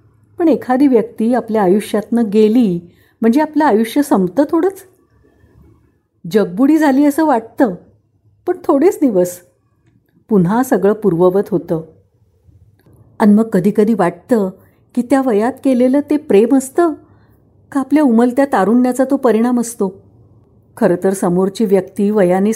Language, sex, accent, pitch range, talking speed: Marathi, female, native, 170-245 Hz, 120 wpm